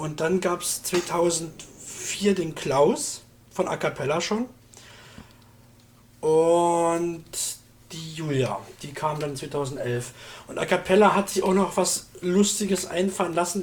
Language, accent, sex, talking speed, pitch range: German, German, male, 130 wpm, 130-180 Hz